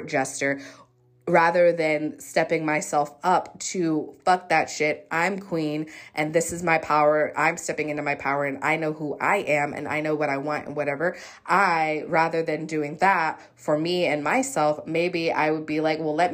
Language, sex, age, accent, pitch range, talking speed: English, female, 20-39, American, 150-185 Hz, 190 wpm